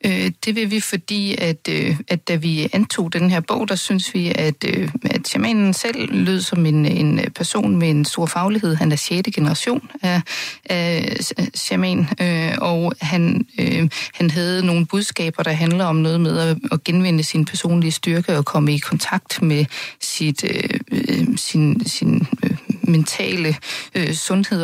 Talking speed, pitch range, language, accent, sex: 160 wpm, 160-185 Hz, Danish, native, female